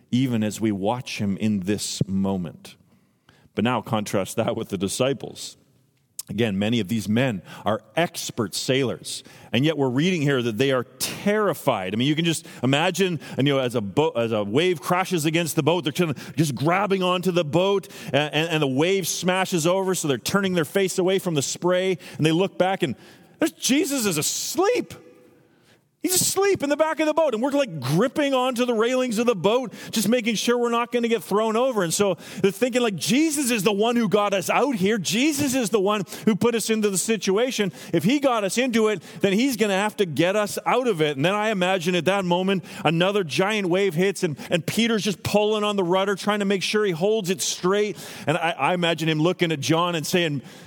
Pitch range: 150-220 Hz